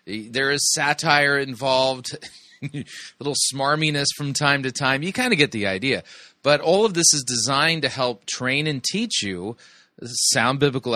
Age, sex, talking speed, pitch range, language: 30-49, male, 170 wpm, 115-145 Hz, English